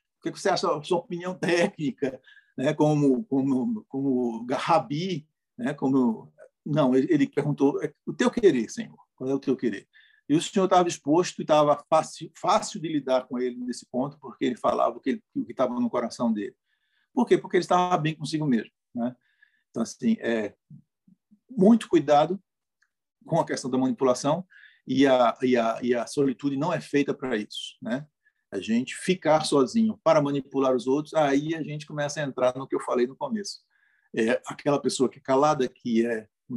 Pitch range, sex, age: 130-185 Hz, male, 50-69